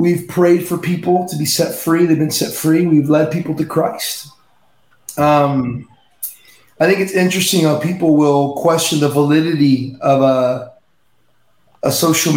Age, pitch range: 30-49, 140-160 Hz